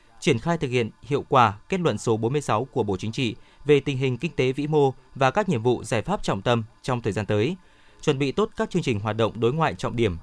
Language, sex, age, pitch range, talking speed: Vietnamese, male, 20-39, 115-160 Hz, 265 wpm